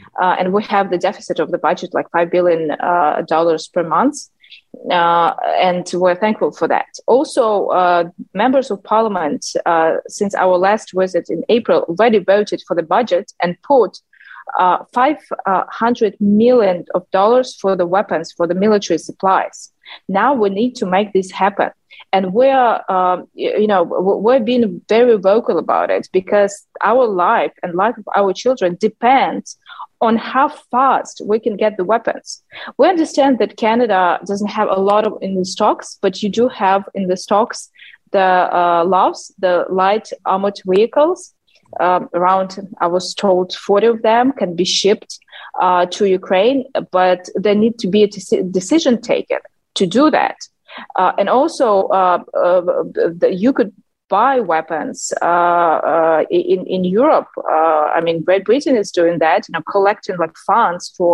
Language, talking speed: English, 165 wpm